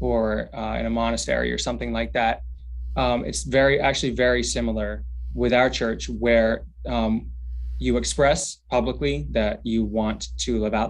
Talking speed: 160 wpm